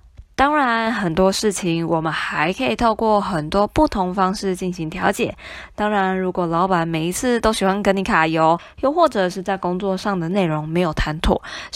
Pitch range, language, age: 170-215 Hz, Chinese, 20-39